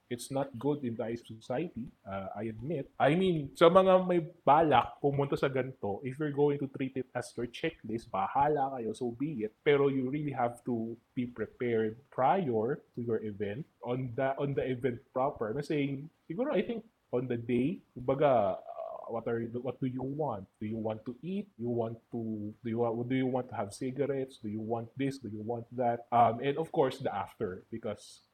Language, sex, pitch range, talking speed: Filipino, male, 115-145 Hz, 200 wpm